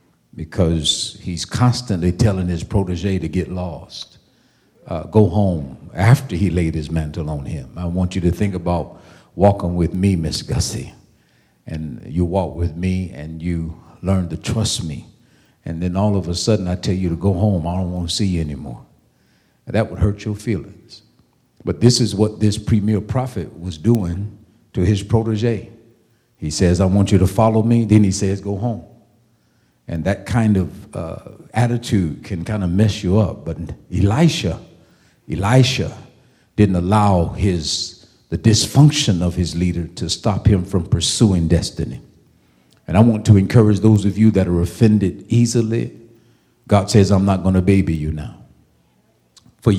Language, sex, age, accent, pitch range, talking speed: English, male, 50-69, American, 90-115 Hz, 170 wpm